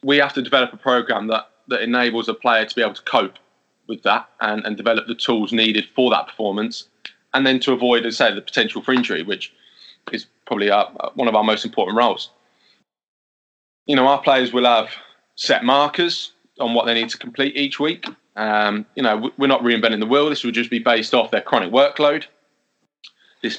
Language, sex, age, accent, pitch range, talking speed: English, male, 20-39, British, 115-140 Hz, 210 wpm